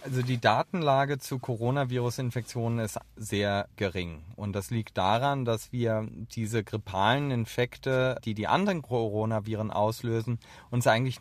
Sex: male